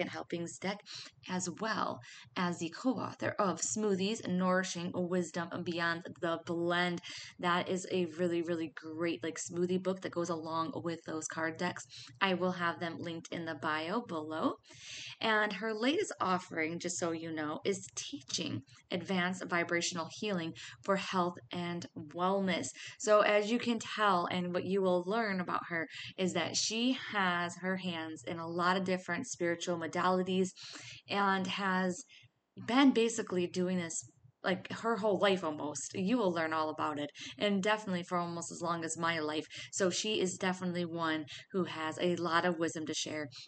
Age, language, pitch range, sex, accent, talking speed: 20-39, English, 165-195 Hz, female, American, 170 wpm